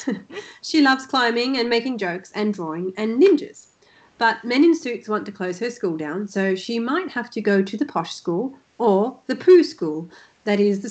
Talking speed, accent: 205 wpm, Australian